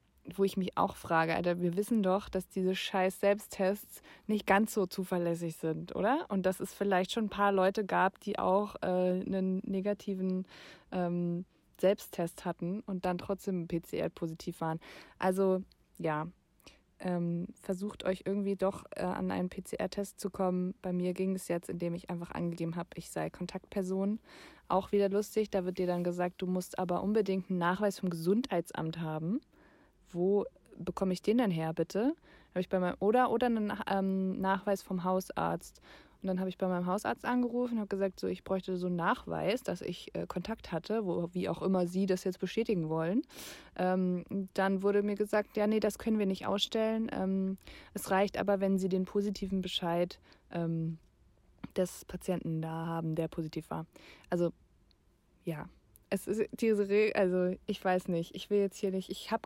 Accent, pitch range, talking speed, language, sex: German, 180-205 Hz, 170 wpm, German, female